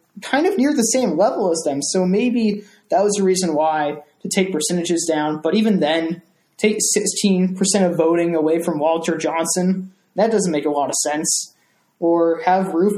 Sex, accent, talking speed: male, American, 185 wpm